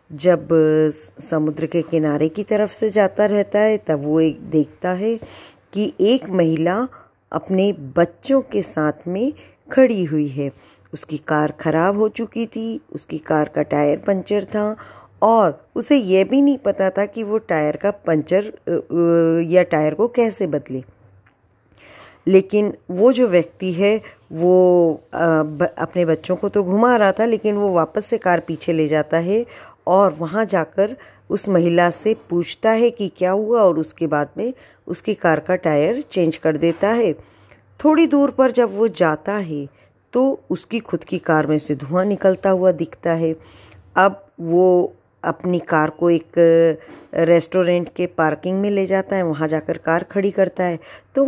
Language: Hindi